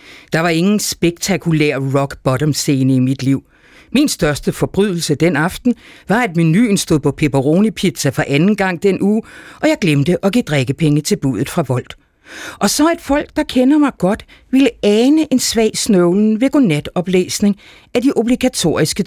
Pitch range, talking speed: 150-220 Hz, 165 wpm